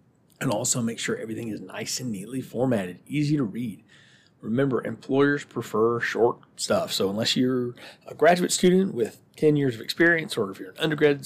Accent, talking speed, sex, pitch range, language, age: American, 180 wpm, male, 115-150 Hz, English, 40-59